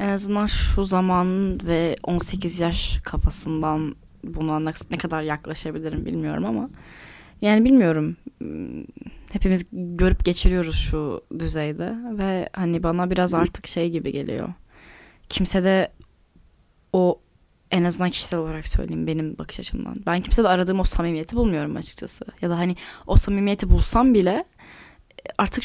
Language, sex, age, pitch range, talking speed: Turkish, female, 10-29, 165-210 Hz, 130 wpm